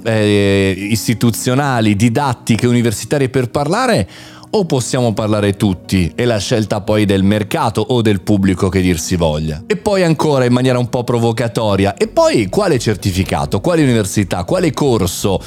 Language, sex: Italian, male